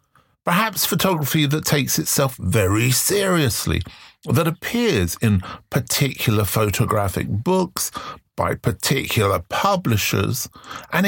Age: 50-69